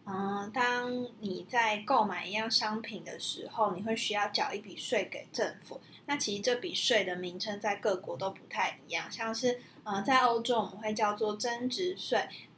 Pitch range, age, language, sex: 200-240 Hz, 20-39, Chinese, female